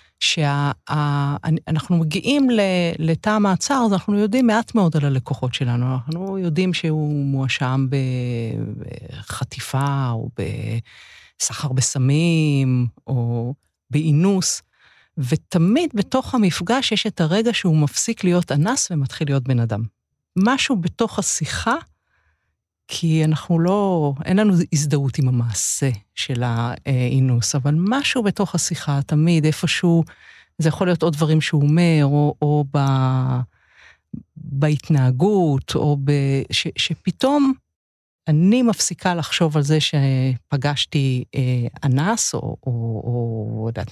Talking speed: 105 wpm